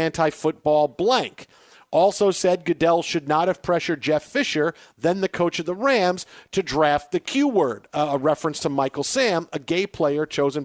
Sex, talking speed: male, 170 wpm